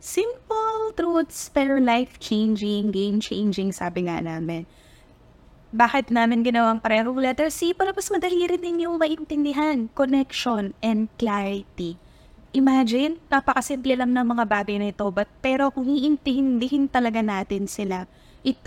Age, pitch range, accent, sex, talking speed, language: 20-39, 205-265 Hz, native, female, 130 wpm, Filipino